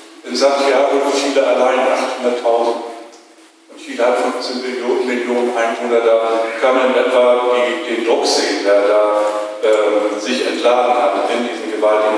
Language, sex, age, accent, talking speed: German, male, 50-69, German, 150 wpm